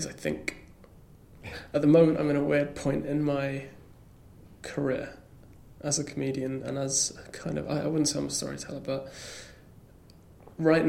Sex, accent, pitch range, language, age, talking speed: male, British, 125-145 Hz, English, 20-39, 155 wpm